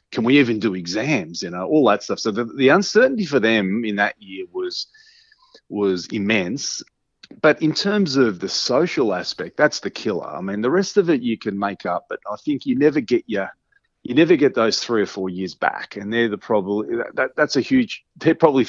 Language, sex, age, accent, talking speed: English, male, 30-49, Australian, 220 wpm